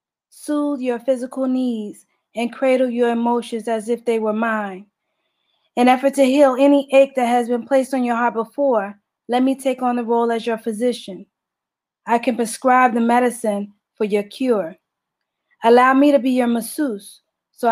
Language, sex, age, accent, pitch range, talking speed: English, female, 20-39, American, 225-255 Hz, 175 wpm